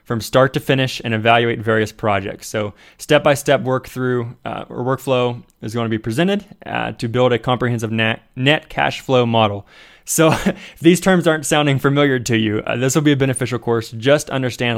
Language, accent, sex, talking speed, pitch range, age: English, American, male, 200 wpm, 115-130 Hz, 20-39